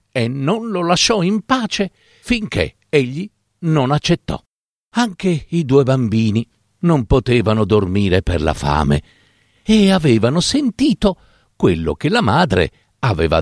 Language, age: Italian, 50-69